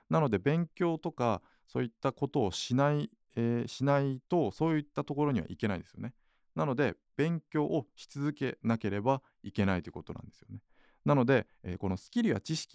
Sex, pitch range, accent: male, 95-140 Hz, native